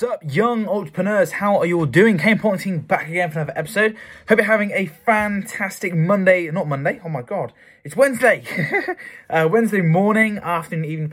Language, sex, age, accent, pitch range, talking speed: English, male, 10-29, British, 120-180 Hz, 190 wpm